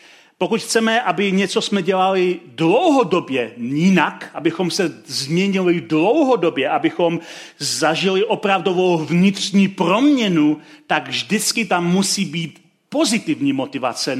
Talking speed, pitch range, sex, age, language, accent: 100 wpm, 165-200 Hz, male, 40-59, Czech, native